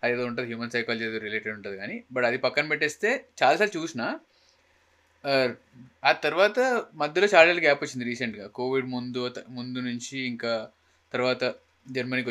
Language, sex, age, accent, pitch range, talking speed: Telugu, male, 20-39, native, 125-165 Hz, 135 wpm